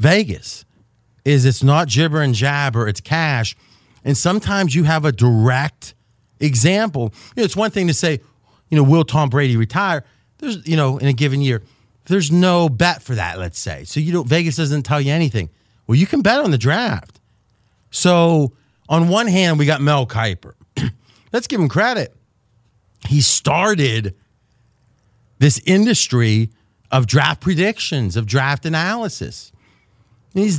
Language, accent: English, American